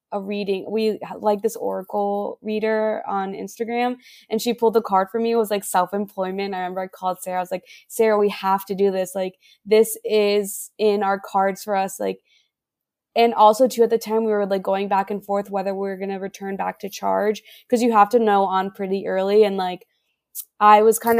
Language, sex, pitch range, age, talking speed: English, female, 190-220 Hz, 20-39, 220 wpm